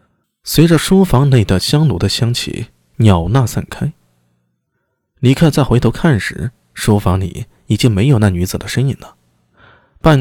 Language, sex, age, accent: Chinese, male, 20-39, native